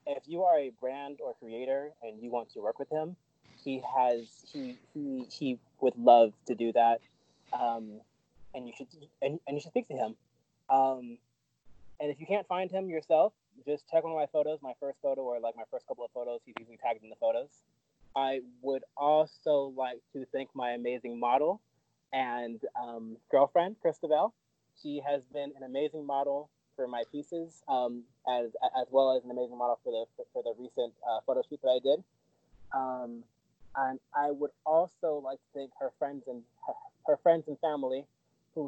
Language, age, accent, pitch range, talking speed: English, 20-39, American, 125-160 Hz, 190 wpm